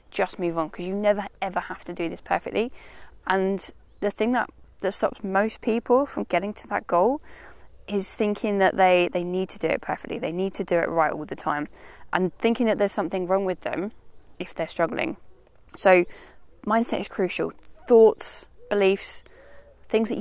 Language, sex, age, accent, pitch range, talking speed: English, female, 20-39, British, 180-220 Hz, 185 wpm